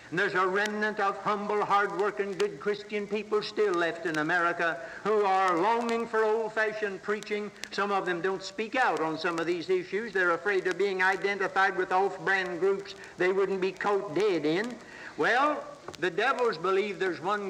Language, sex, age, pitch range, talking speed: English, male, 60-79, 195-220 Hz, 170 wpm